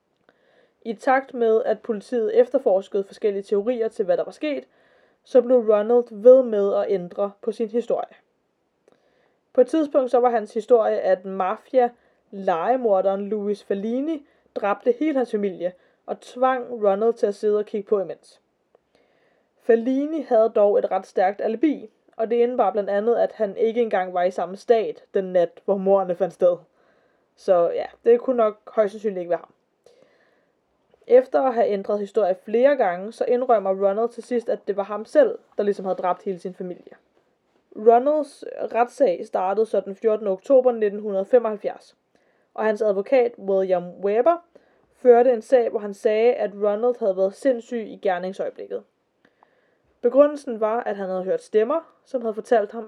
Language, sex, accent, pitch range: Danish, female, native, 200-255 Hz